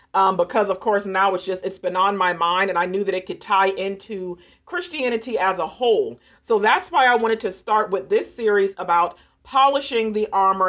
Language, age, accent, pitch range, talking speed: English, 40-59, American, 185-240 Hz, 215 wpm